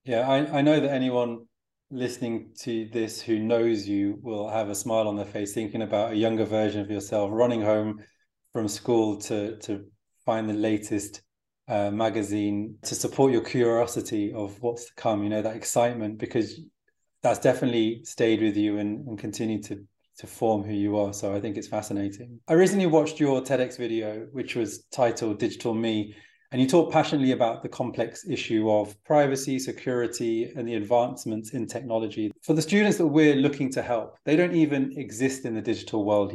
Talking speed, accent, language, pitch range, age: 185 wpm, British, English, 105-130 Hz, 20-39